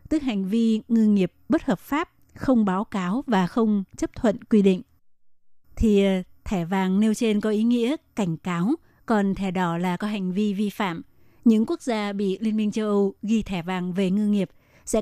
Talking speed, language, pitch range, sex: 205 wpm, Vietnamese, 185-220 Hz, female